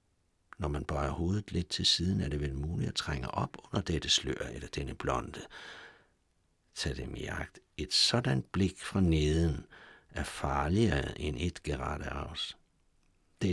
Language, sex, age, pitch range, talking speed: Danish, male, 60-79, 80-100 Hz, 160 wpm